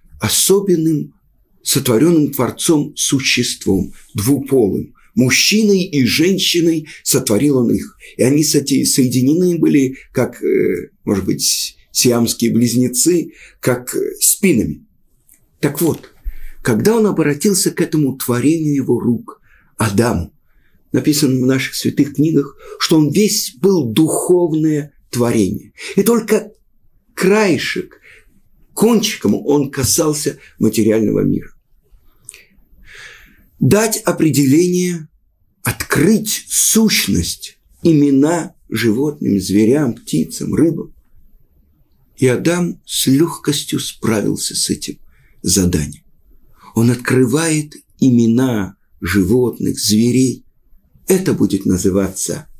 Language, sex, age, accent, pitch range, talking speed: Russian, male, 50-69, native, 120-170 Hz, 85 wpm